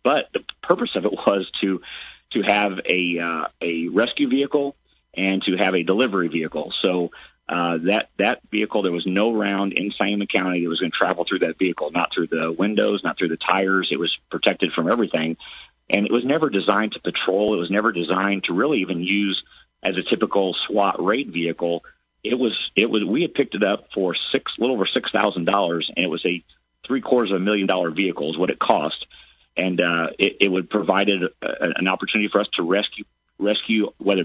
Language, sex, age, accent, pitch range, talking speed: English, male, 40-59, American, 85-105 Hz, 205 wpm